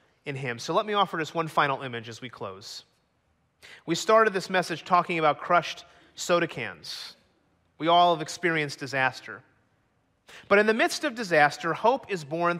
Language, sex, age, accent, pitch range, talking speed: English, male, 30-49, American, 150-205 Hz, 170 wpm